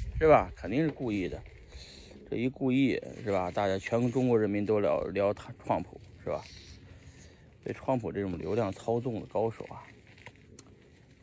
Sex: male